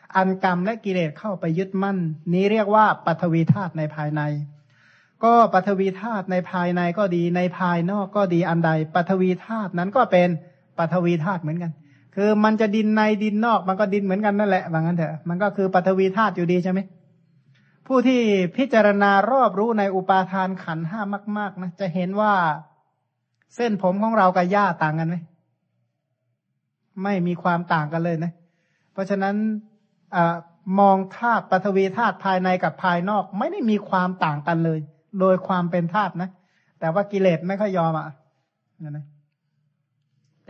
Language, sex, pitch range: Thai, male, 170-205 Hz